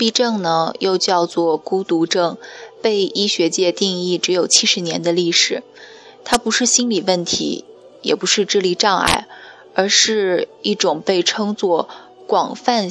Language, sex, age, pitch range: Chinese, female, 20-39, 175-225 Hz